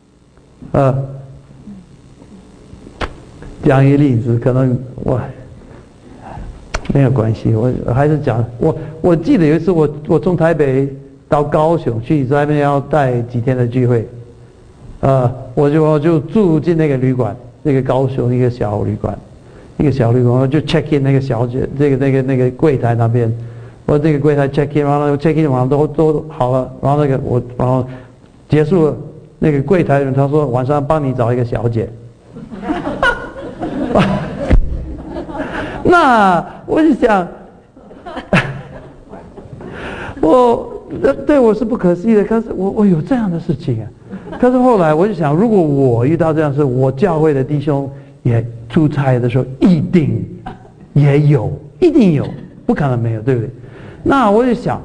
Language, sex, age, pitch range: Chinese, male, 50-69, 125-160 Hz